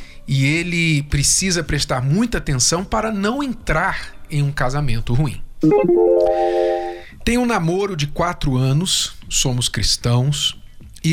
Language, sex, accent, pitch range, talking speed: Portuguese, male, Brazilian, 125-170 Hz, 120 wpm